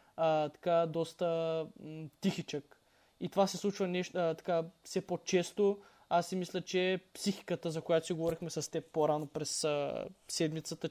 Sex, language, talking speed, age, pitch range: male, Bulgarian, 160 wpm, 20-39, 160-180 Hz